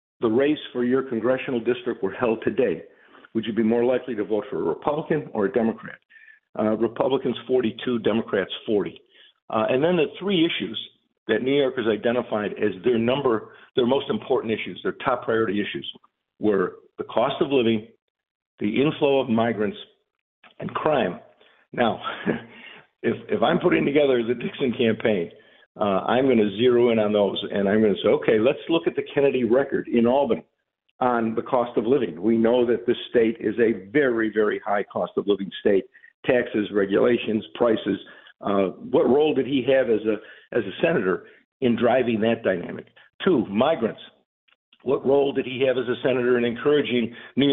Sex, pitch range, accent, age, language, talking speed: male, 110-135 Hz, American, 50-69, English, 175 wpm